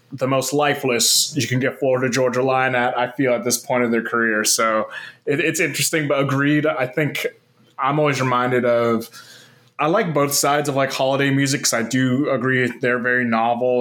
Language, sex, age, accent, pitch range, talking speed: English, male, 20-39, American, 120-145 Hz, 195 wpm